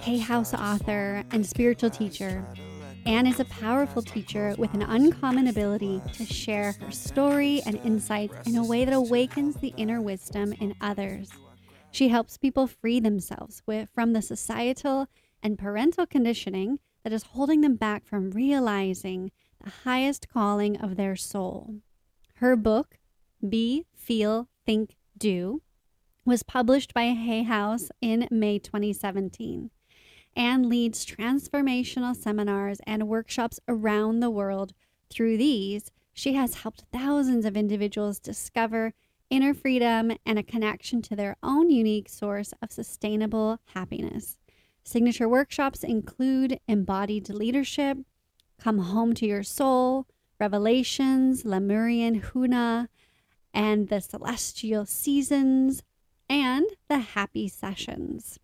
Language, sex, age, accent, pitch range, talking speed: English, female, 30-49, American, 205-255 Hz, 125 wpm